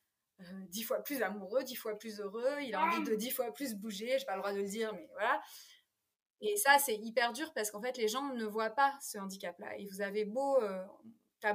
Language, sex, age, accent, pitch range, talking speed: French, female, 20-39, French, 215-275 Hz, 245 wpm